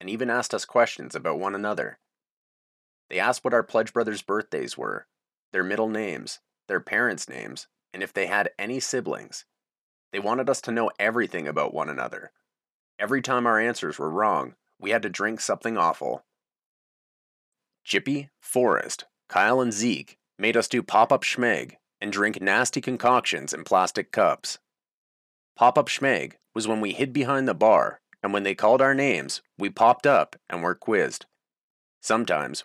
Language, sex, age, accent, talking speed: English, male, 30-49, American, 165 wpm